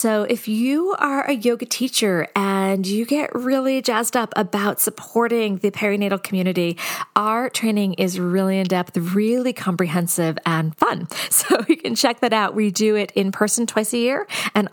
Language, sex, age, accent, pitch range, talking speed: English, female, 40-59, American, 175-225 Hz, 170 wpm